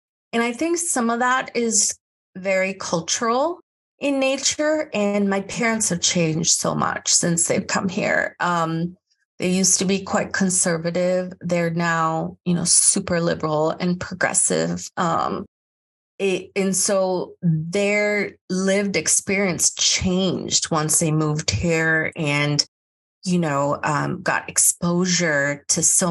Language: English